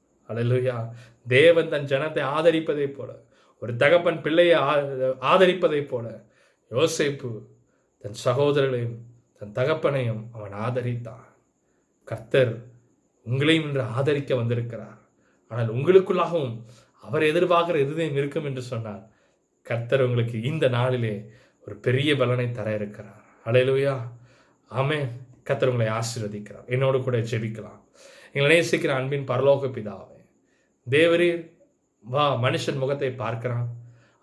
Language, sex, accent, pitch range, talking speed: Tamil, male, native, 115-145 Hz, 100 wpm